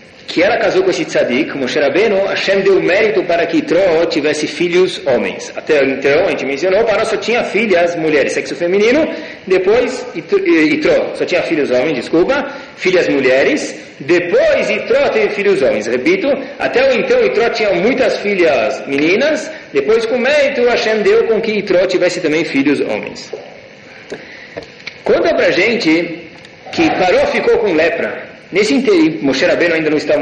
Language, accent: Portuguese, Brazilian